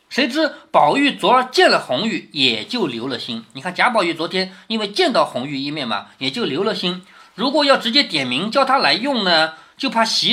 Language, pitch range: Chinese, 195-310 Hz